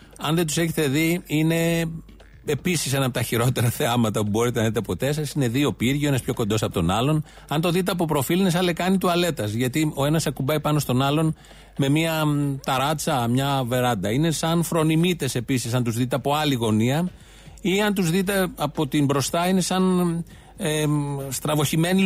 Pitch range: 130-165 Hz